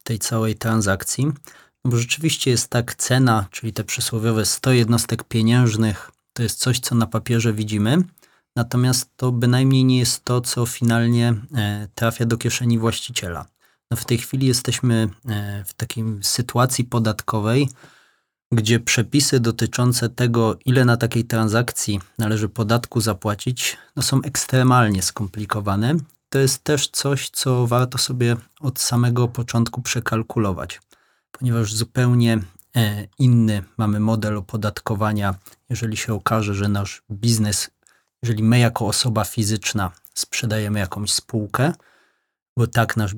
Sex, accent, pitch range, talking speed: male, native, 110-125 Hz, 125 wpm